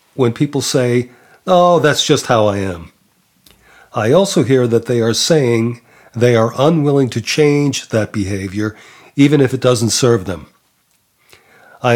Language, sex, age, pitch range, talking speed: English, male, 40-59, 110-140 Hz, 150 wpm